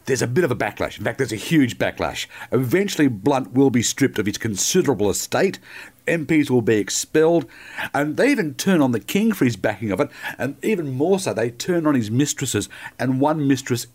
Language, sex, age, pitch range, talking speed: English, male, 50-69, 120-185 Hz, 210 wpm